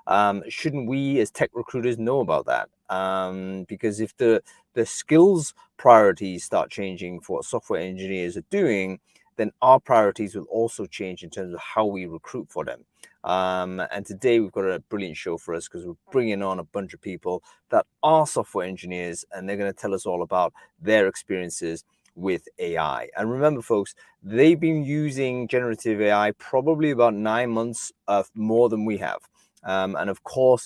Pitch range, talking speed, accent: 95-130 Hz, 180 wpm, British